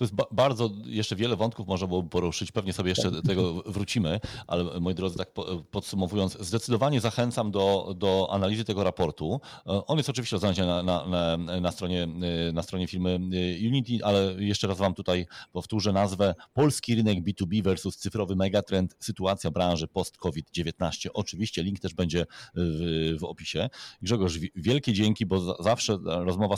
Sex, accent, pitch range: male, native, 90-110 Hz